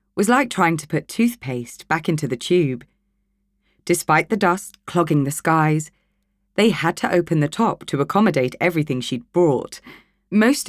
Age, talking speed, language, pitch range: 30-49, 155 wpm, English, 140-185 Hz